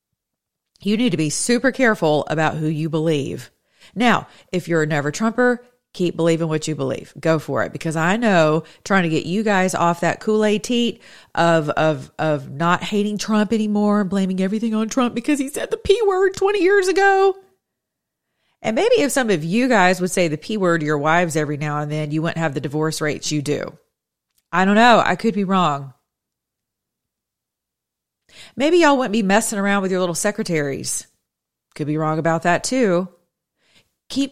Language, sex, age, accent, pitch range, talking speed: English, female, 30-49, American, 160-220 Hz, 180 wpm